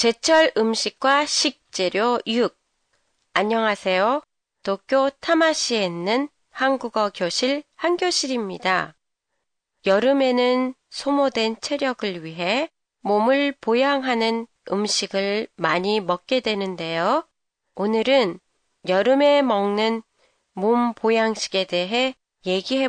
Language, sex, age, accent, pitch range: Japanese, female, 30-49, Korean, 195-265 Hz